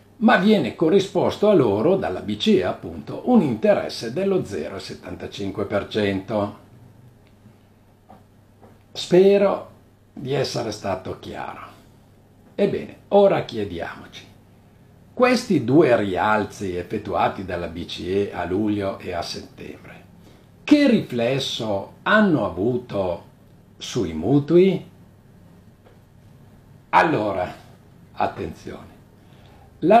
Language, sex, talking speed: Italian, male, 80 wpm